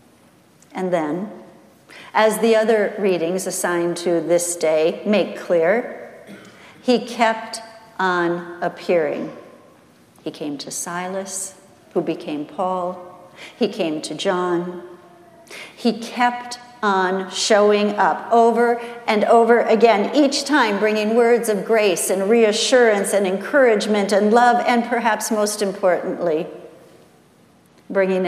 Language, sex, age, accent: English, female, 50-69, American